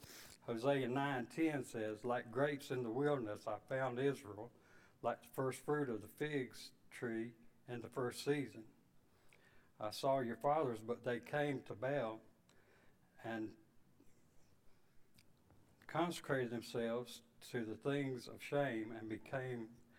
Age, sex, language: 60-79, male, English